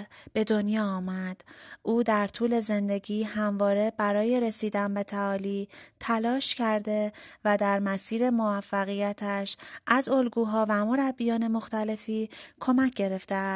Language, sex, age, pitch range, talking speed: Persian, female, 30-49, 205-235 Hz, 110 wpm